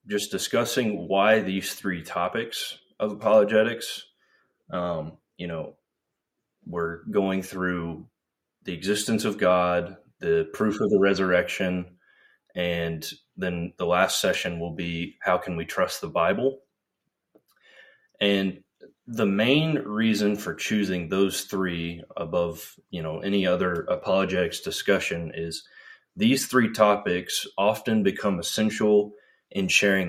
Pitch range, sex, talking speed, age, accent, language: 85-105 Hz, male, 120 wpm, 20-39, American, English